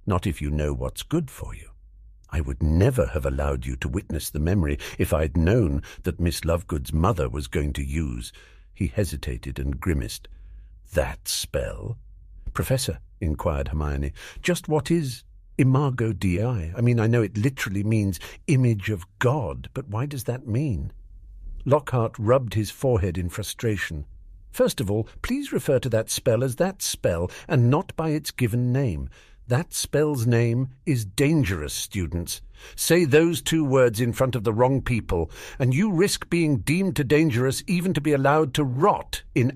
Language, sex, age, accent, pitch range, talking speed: English, male, 50-69, British, 85-135 Hz, 170 wpm